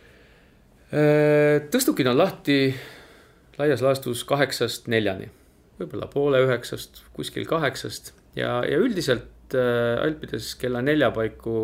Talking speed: 95 wpm